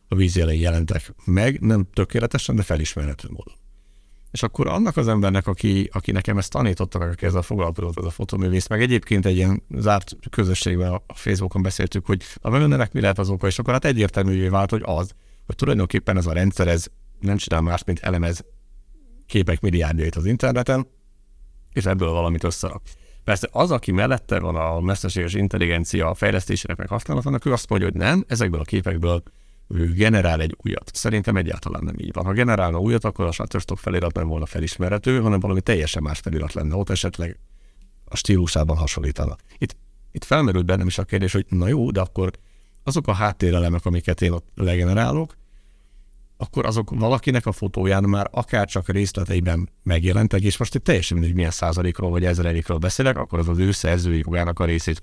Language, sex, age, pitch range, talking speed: Hungarian, male, 60-79, 90-105 Hz, 175 wpm